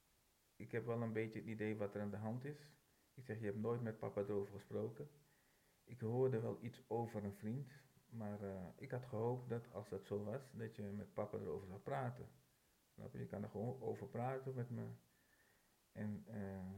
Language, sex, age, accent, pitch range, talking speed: Dutch, male, 50-69, Dutch, 100-120 Hz, 195 wpm